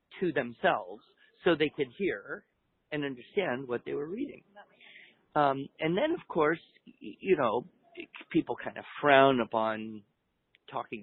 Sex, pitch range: male, 120-175 Hz